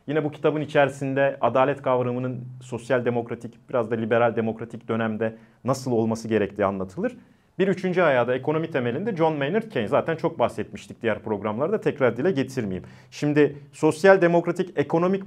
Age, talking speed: 40-59, 150 wpm